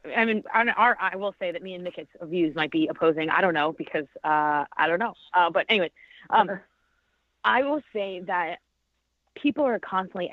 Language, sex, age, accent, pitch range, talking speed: English, female, 30-49, American, 170-225 Hz, 200 wpm